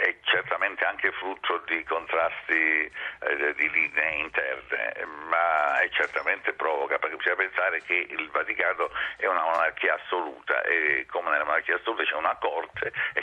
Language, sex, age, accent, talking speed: Italian, male, 60-79, native, 150 wpm